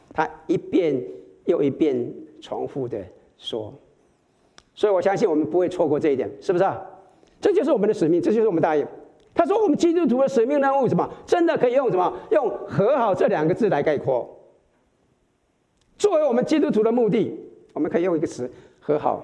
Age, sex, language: 50-69, male, Chinese